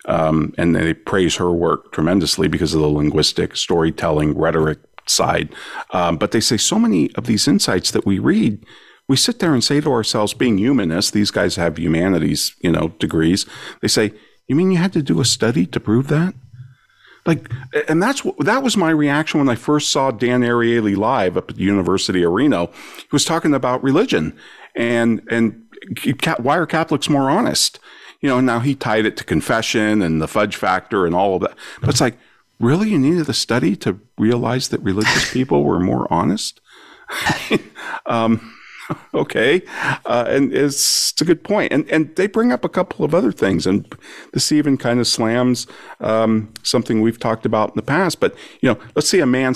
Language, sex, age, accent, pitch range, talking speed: English, male, 50-69, American, 100-145 Hz, 195 wpm